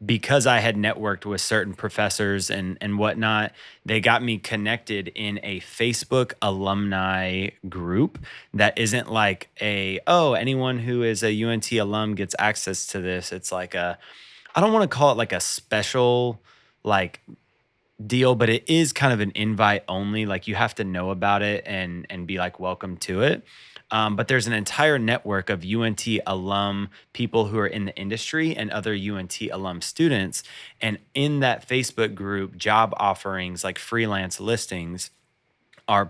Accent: American